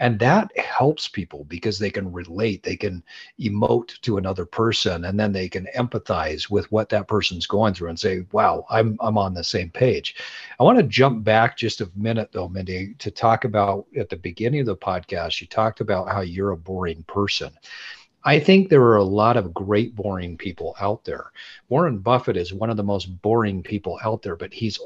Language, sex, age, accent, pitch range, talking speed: English, male, 40-59, American, 95-120 Hz, 210 wpm